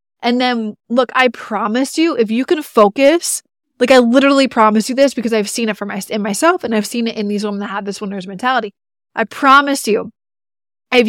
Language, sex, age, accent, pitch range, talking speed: English, female, 20-39, American, 215-255 Hz, 215 wpm